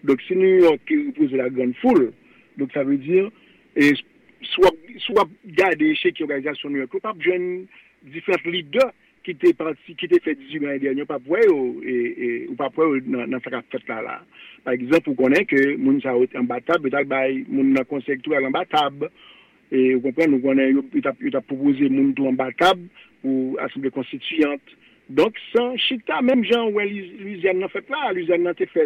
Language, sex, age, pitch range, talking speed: English, male, 50-69, 135-205 Hz, 150 wpm